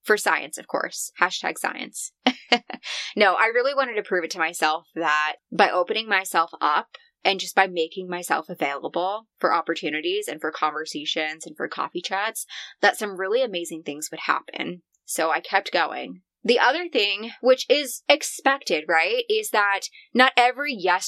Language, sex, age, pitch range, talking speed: English, female, 20-39, 170-255 Hz, 165 wpm